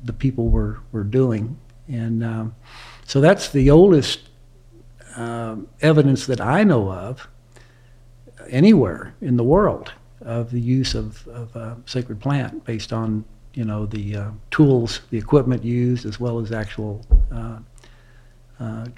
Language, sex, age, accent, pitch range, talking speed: English, male, 60-79, American, 115-130 Hz, 140 wpm